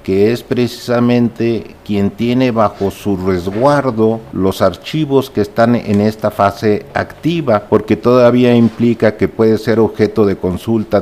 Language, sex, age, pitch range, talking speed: Spanish, male, 50-69, 95-120 Hz, 135 wpm